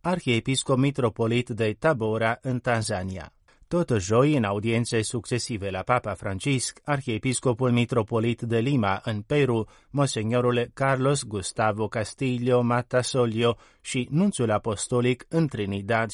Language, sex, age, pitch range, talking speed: Romanian, male, 30-49, 110-130 Hz, 110 wpm